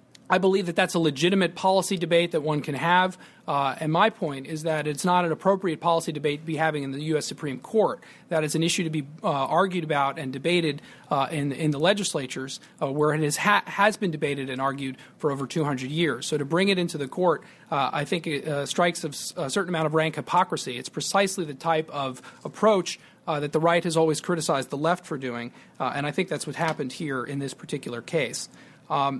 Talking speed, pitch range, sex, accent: 230 wpm, 150-185 Hz, male, American